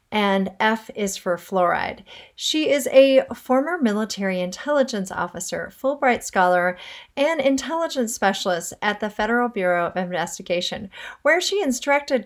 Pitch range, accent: 190-265 Hz, American